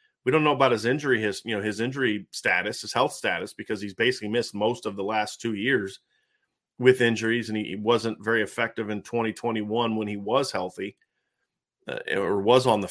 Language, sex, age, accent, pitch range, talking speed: English, male, 40-59, American, 110-140 Hz, 200 wpm